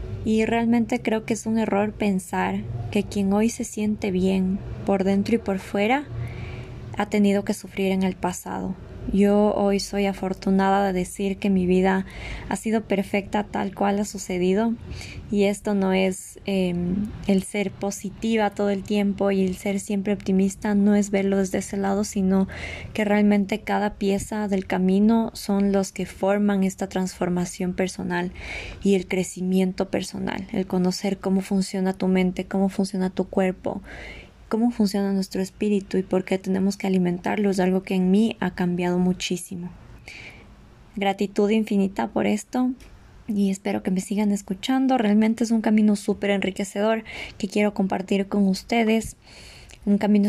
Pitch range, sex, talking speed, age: 190-210 Hz, female, 160 wpm, 20-39